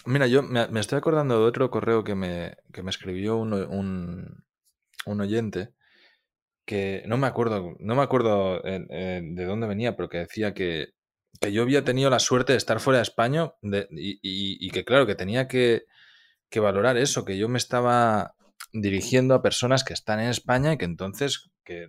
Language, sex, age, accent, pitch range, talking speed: Spanish, male, 20-39, Spanish, 95-125 Hz, 190 wpm